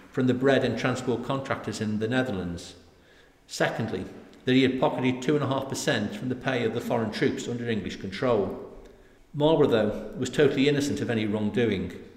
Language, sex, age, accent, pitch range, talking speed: English, male, 50-69, British, 110-130 Hz, 165 wpm